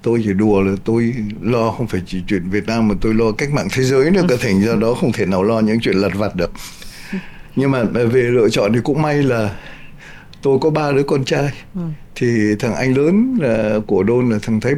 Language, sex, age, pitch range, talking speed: Vietnamese, male, 60-79, 105-140 Hz, 235 wpm